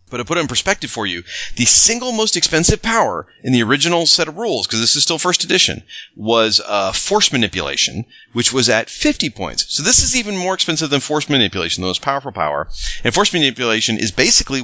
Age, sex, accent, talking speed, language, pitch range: 30-49, male, American, 215 wpm, English, 110-150 Hz